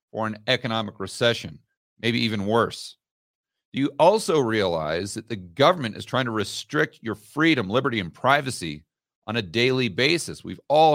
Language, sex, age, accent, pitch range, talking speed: English, male, 40-59, American, 110-145 Hz, 155 wpm